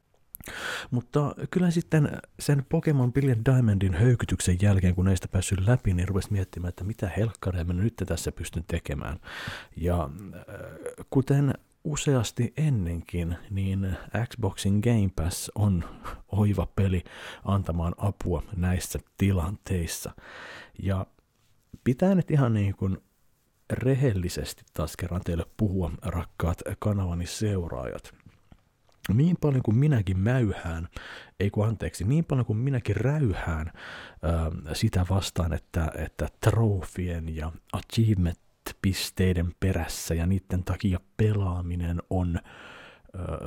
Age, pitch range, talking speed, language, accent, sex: 50-69, 85-110 Hz, 110 wpm, Finnish, native, male